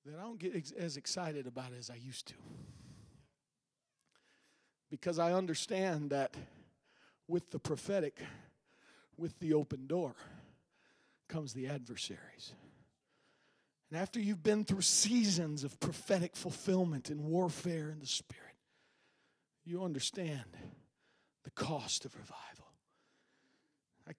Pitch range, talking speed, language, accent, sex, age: 155-195 Hz, 115 wpm, English, American, male, 40-59